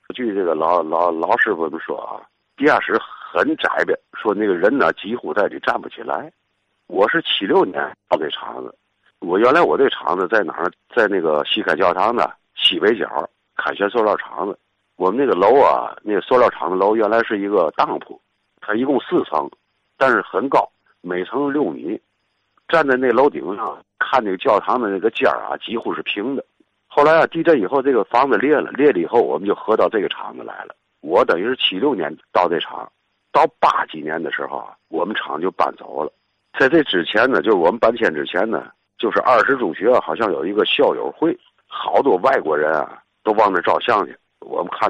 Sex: male